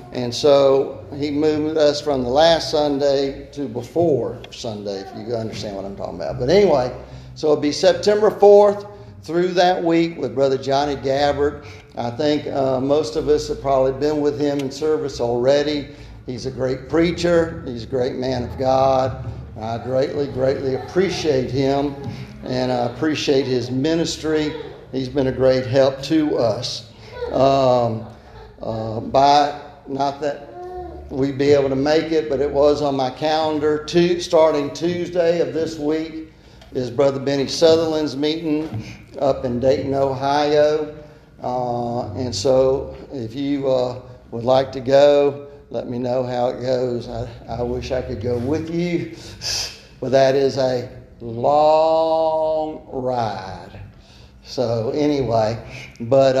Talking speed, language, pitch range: 150 wpm, English, 125-150 Hz